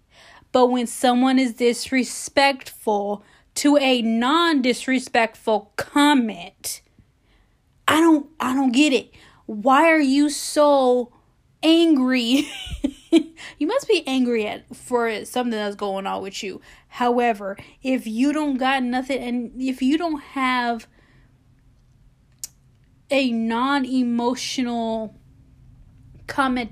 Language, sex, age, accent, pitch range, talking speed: English, female, 10-29, American, 230-275 Hz, 110 wpm